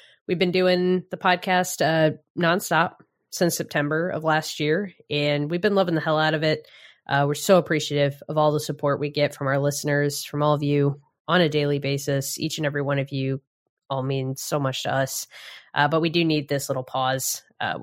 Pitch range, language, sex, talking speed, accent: 150-185 Hz, English, female, 210 wpm, American